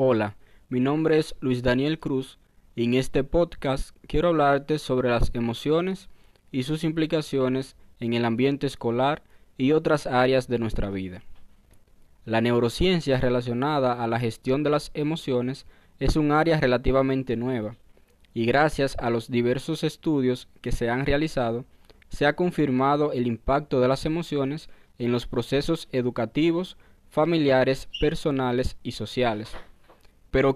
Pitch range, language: 120-150 Hz, Spanish